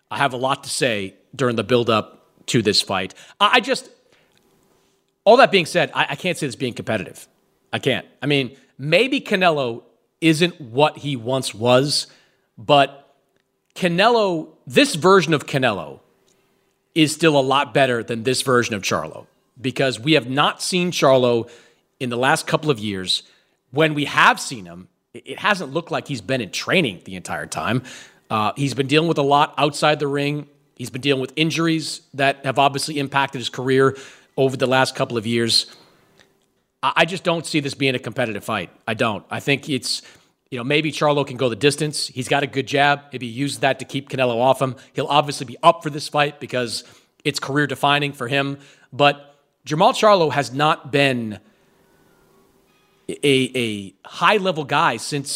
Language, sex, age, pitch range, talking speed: English, male, 40-59, 130-150 Hz, 180 wpm